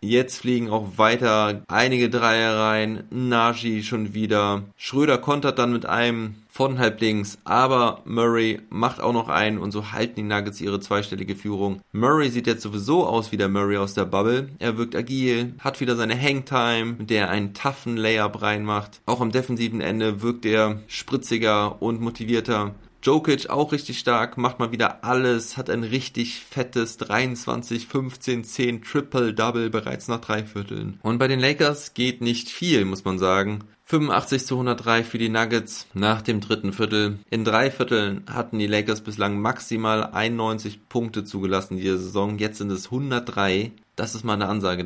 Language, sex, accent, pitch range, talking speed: German, male, German, 105-120 Hz, 165 wpm